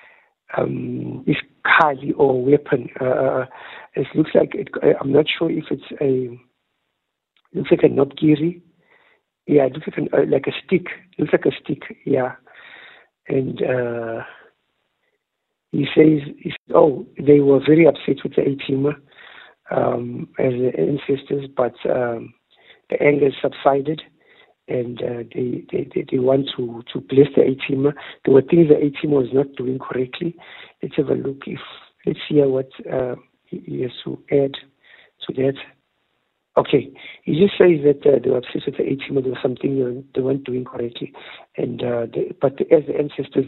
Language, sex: English, male